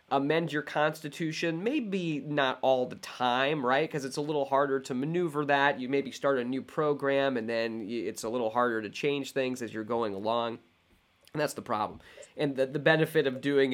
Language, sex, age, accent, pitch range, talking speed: English, male, 30-49, American, 105-135 Hz, 200 wpm